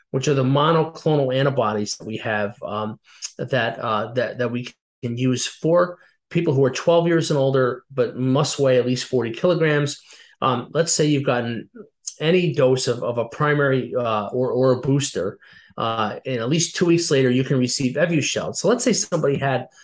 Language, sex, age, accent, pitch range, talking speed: English, male, 30-49, American, 120-145 Hz, 190 wpm